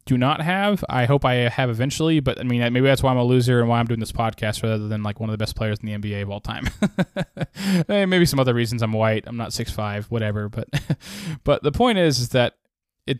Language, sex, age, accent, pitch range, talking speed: English, male, 10-29, American, 110-135 Hz, 250 wpm